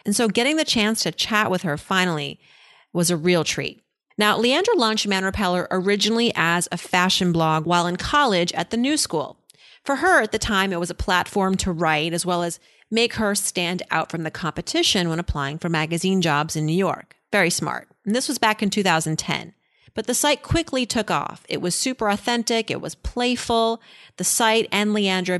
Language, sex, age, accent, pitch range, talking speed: English, female, 40-59, American, 175-225 Hz, 200 wpm